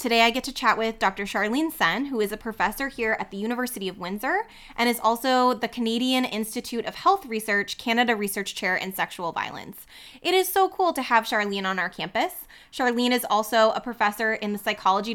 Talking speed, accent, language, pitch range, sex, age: 205 wpm, American, English, 200-250 Hz, female, 20-39